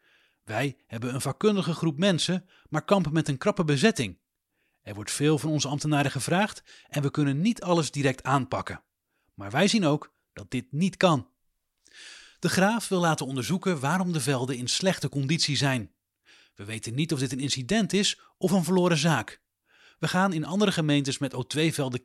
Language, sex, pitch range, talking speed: English, male, 130-170 Hz, 175 wpm